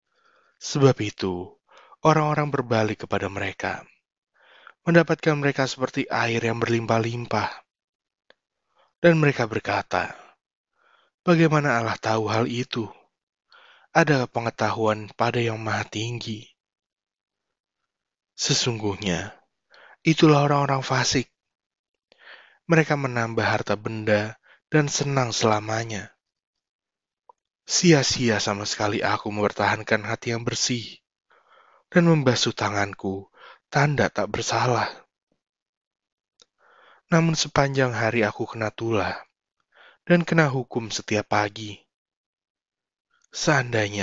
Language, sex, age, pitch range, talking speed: Indonesian, male, 20-39, 105-140 Hz, 85 wpm